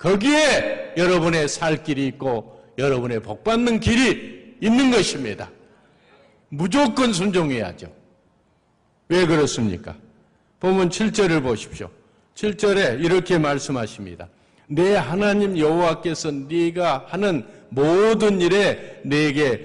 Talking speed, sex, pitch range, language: 85 wpm, male, 145-215 Hz, English